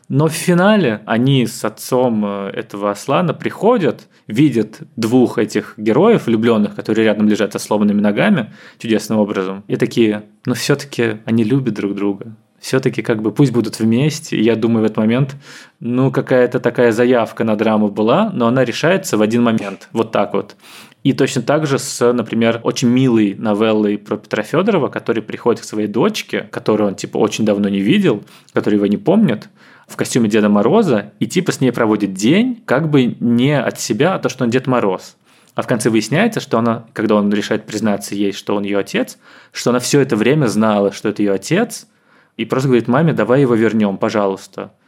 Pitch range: 110-130 Hz